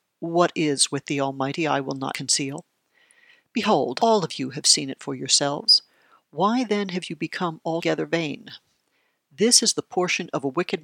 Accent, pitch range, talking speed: American, 150-195 Hz, 175 wpm